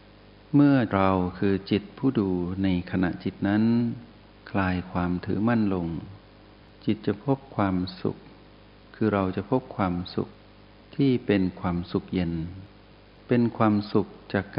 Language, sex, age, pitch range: Thai, male, 60-79, 95-110 Hz